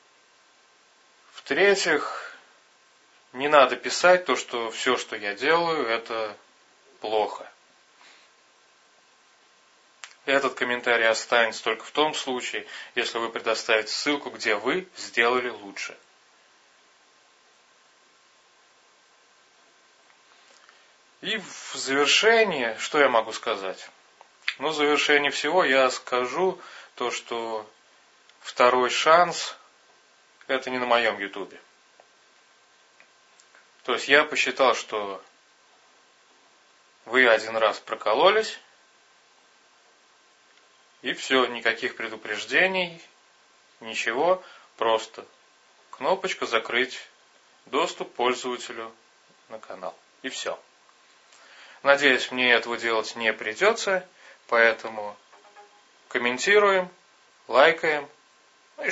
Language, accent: Russian, native